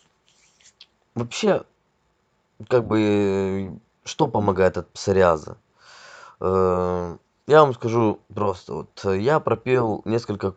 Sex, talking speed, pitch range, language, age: male, 85 wpm, 95-115 Hz, Russian, 20-39